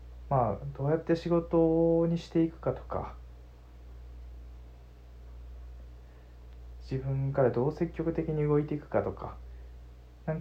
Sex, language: male, Japanese